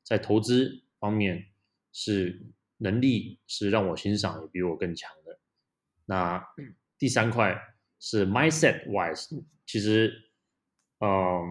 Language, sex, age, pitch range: Chinese, male, 20-39, 90-110 Hz